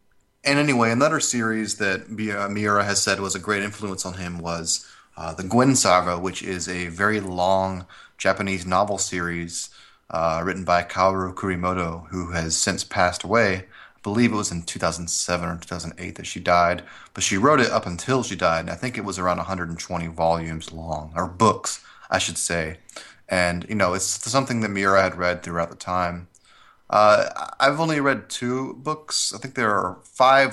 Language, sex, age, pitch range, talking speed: English, male, 30-49, 90-110 Hz, 180 wpm